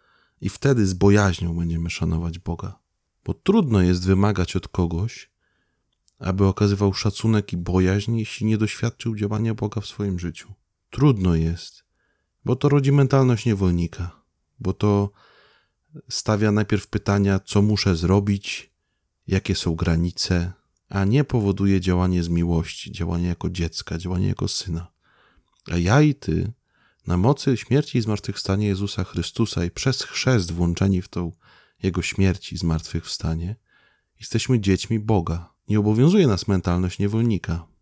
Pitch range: 90-110 Hz